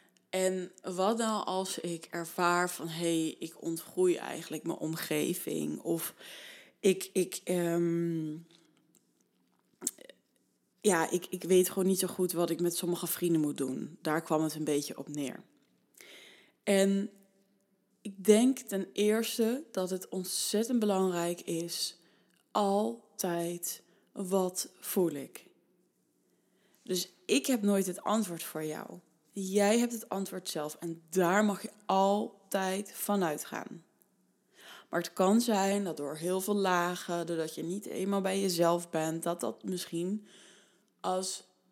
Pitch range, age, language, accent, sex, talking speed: 170-205 Hz, 20-39, Dutch, Dutch, female, 135 wpm